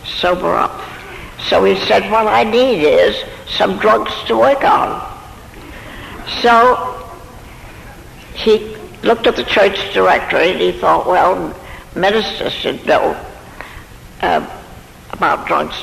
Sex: female